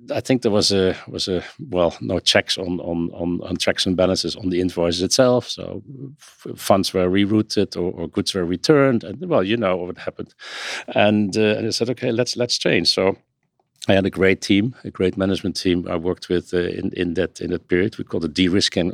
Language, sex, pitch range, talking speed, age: English, male, 85-100 Hz, 220 wpm, 50-69